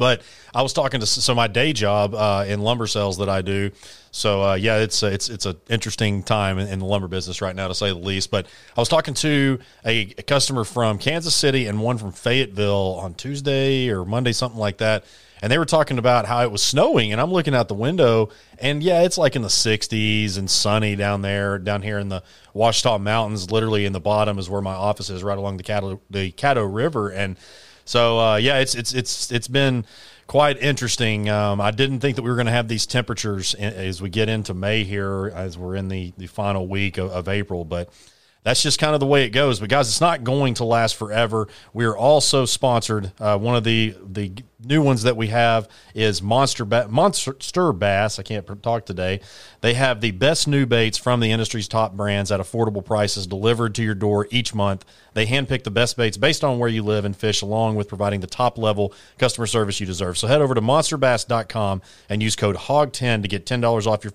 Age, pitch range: 30-49, 100-125 Hz